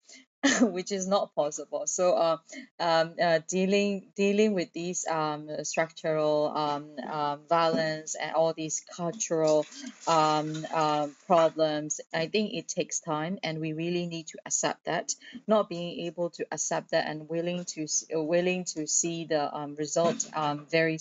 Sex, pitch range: female, 150-175 Hz